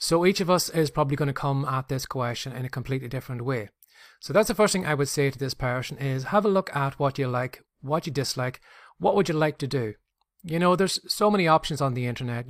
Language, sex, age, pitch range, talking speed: English, male, 30-49, 135-160 Hz, 260 wpm